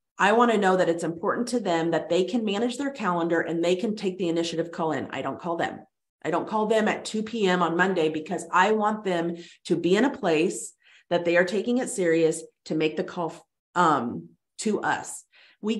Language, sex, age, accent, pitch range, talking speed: English, female, 30-49, American, 175-225 Hz, 225 wpm